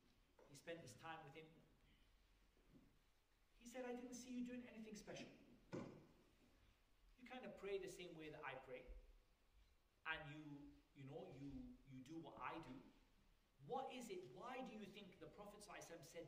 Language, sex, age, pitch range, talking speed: English, male, 40-59, 140-225 Hz, 160 wpm